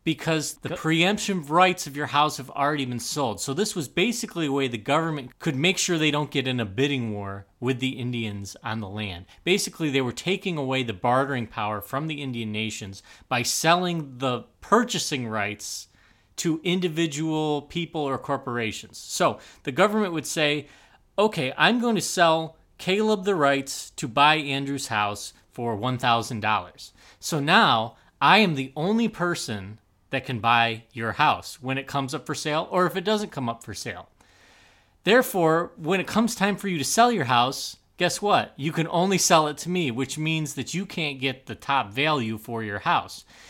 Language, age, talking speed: English, 30-49, 185 wpm